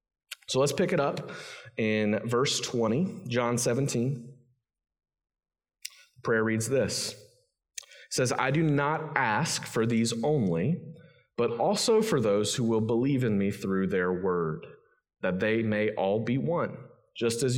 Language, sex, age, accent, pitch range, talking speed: English, male, 30-49, American, 115-160 Hz, 145 wpm